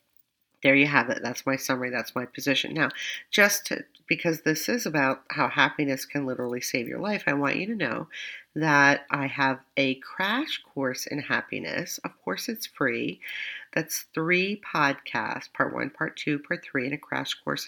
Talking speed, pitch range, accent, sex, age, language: 180 wpm, 140-195 Hz, American, female, 40-59, English